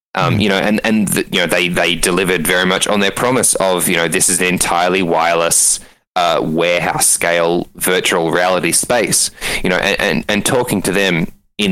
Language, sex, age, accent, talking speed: English, male, 20-39, Australian, 195 wpm